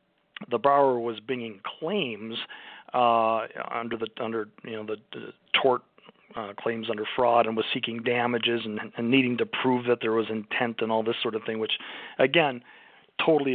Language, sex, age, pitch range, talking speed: English, male, 40-59, 110-130 Hz, 175 wpm